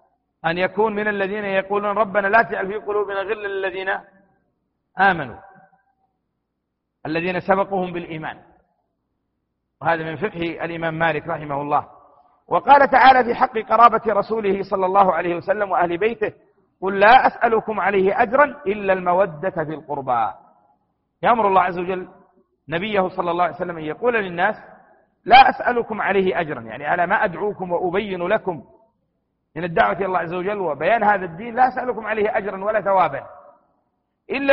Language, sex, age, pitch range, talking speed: Arabic, male, 50-69, 175-215 Hz, 145 wpm